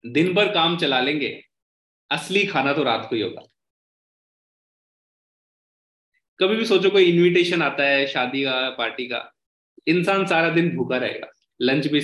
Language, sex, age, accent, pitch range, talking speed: Hindi, male, 20-39, native, 120-165 Hz, 150 wpm